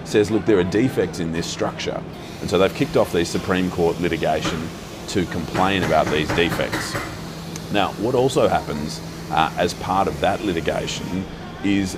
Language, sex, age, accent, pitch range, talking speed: English, male, 30-49, Australian, 85-95 Hz, 165 wpm